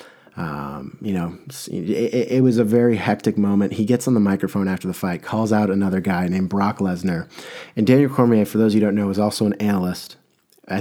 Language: English